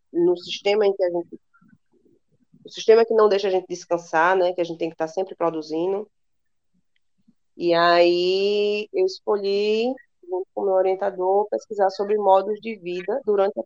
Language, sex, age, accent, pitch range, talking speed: Portuguese, female, 20-39, Brazilian, 170-210 Hz, 165 wpm